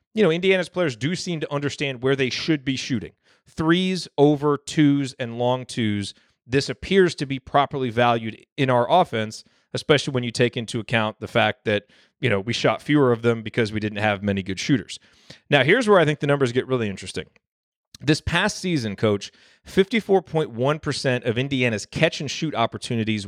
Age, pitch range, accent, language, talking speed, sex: 30-49, 120-155 Hz, American, English, 195 wpm, male